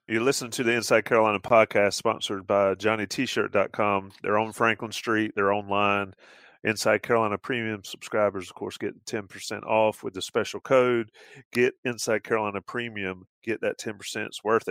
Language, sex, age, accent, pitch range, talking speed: English, male, 30-49, American, 100-120 Hz, 165 wpm